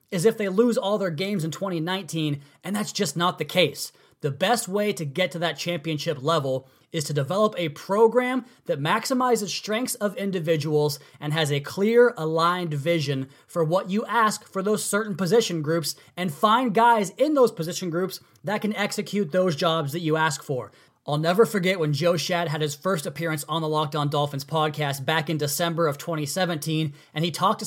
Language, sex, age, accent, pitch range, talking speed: English, male, 20-39, American, 155-205 Hz, 195 wpm